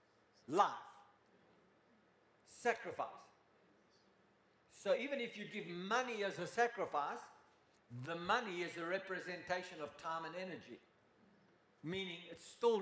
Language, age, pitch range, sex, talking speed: English, 60-79, 180-235 Hz, male, 110 wpm